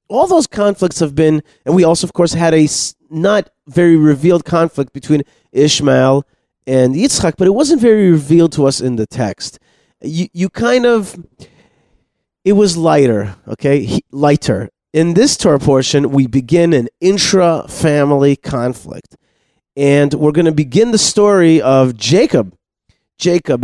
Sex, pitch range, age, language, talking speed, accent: male, 130-175 Hz, 30-49, English, 150 wpm, American